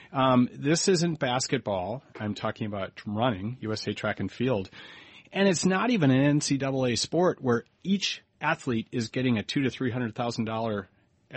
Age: 40-59